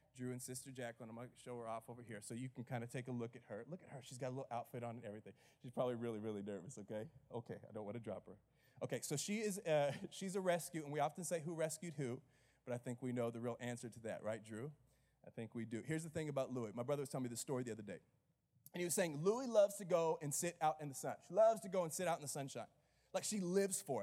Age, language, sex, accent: 30-49, English, male, American